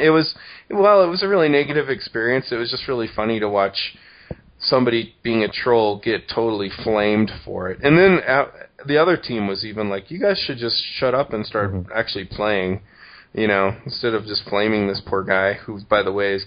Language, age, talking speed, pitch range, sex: English, 30-49, 210 wpm, 100-125 Hz, male